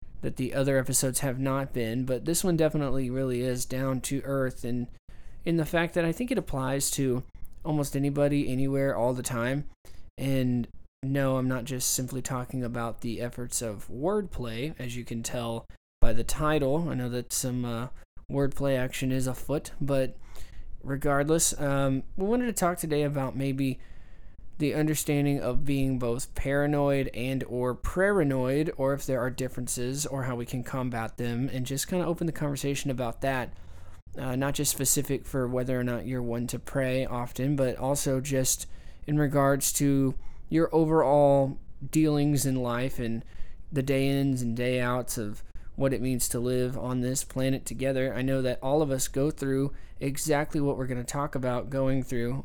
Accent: American